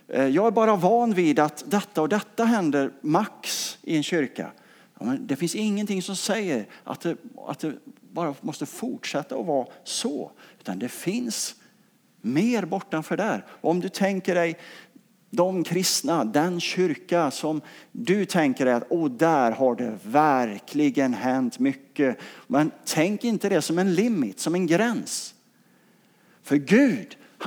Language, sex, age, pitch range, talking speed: English, male, 50-69, 150-220 Hz, 145 wpm